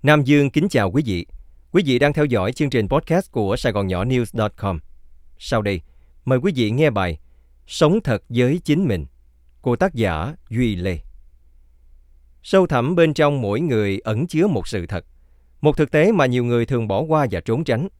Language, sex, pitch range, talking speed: Vietnamese, male, 85-140 Hz, 195 wpm